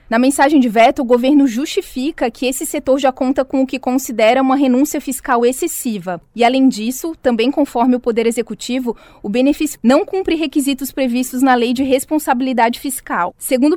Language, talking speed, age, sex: Portuguese, 175 wpm, 20-39, female